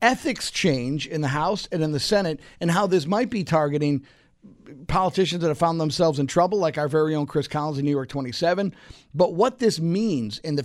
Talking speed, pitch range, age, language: 215 wpm, 145-190 Hz, 50-69, English